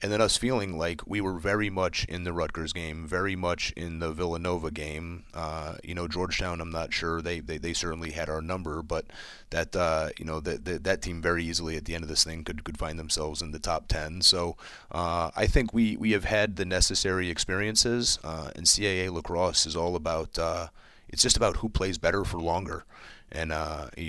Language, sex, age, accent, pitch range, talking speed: English, male, 30-49, American, 80-90 Hz, 215 wpm